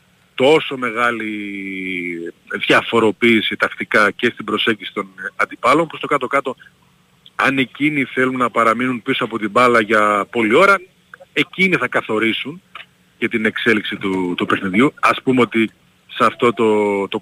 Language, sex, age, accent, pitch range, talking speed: Greek, male, 30-49, native, 105-135 Hz, 140 wpm